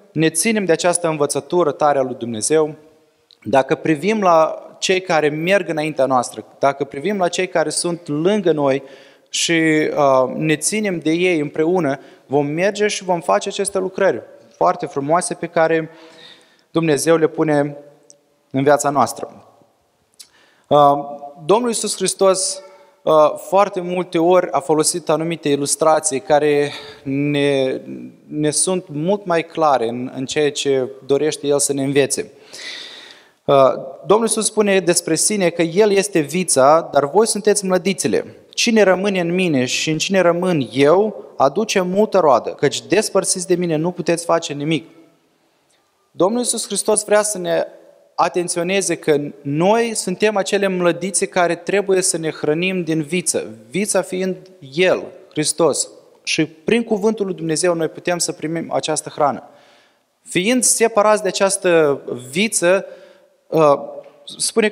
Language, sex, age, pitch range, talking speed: Romanian, male, 20-39, 150-195 Hz, 135 wpm